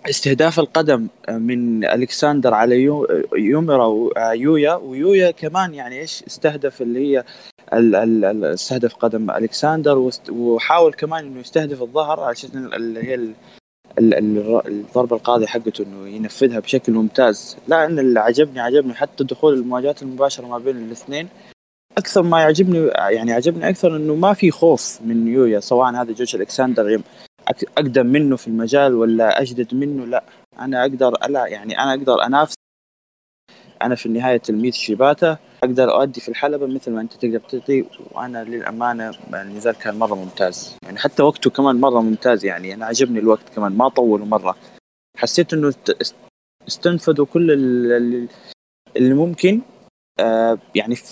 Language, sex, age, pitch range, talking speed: Arabic, male, 20-39, 115-150 Hz, 135 wpm